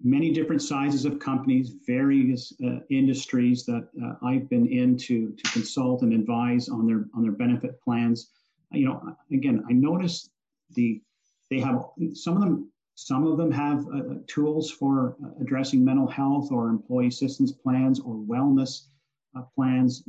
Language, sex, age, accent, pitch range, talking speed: English, male, 50-69, American, 120-145 Hz, 160 wpm